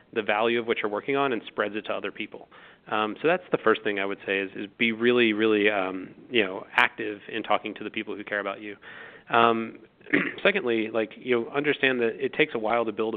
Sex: male